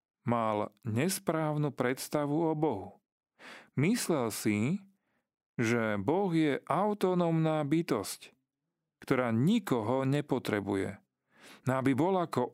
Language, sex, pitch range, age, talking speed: Slovak, male, 125-175 Hz, 40-59, 90 wpm